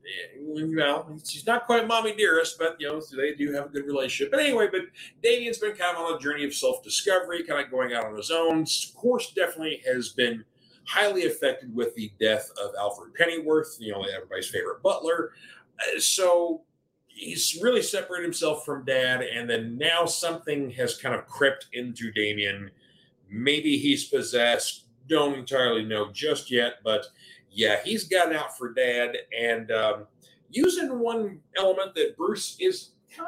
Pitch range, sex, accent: 130-210 Hz, male, American